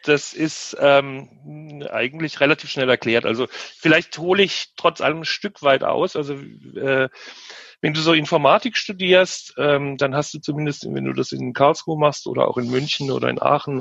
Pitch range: 125-155 Hz